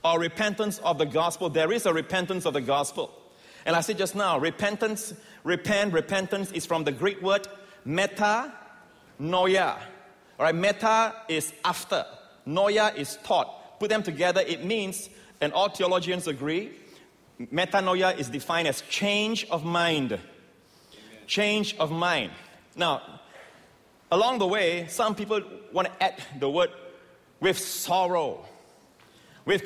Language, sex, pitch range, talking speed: English, male, 170-210 Hz, 135 wpm